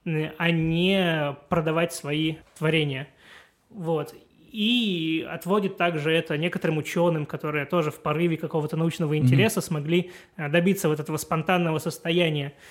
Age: 20-39